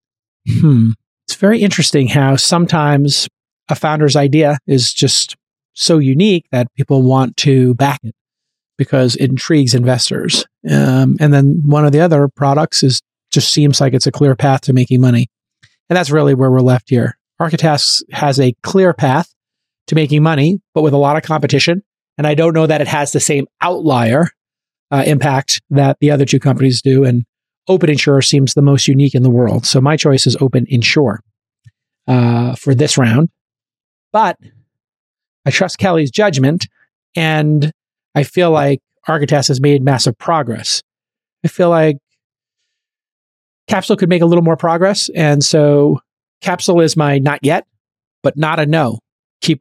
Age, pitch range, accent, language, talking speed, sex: 40-59, 130-160 Hz, American, English, 165 wpm, male